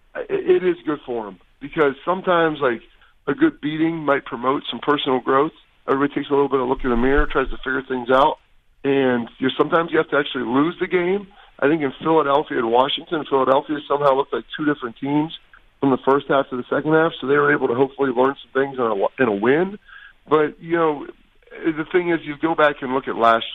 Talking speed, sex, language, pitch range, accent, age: 230 wpm, male, English, 125-150 Hz, American, 40-59